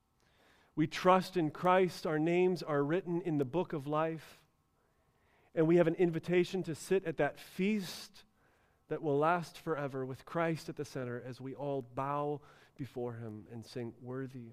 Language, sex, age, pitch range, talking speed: English, male, 40-59, 120-150 Hz, 170 wpm